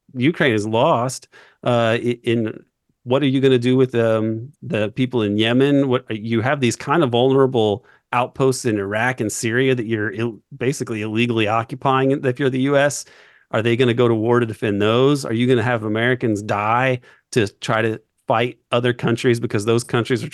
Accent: American